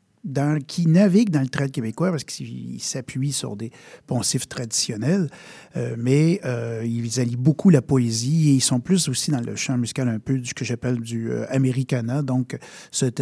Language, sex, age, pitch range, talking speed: French, male, 50-69, 130-175 Hz, 190 wpm